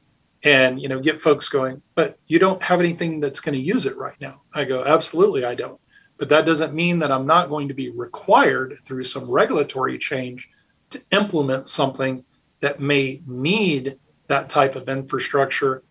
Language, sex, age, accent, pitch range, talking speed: English, male, 40-59, American, 130-150 Hz, 180 wpm